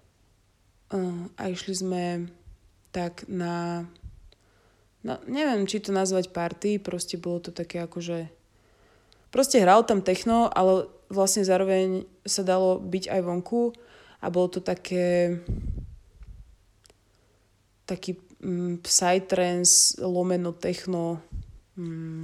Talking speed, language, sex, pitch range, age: 100 wpm, Slovak, female, 165-185 Hz, 20-39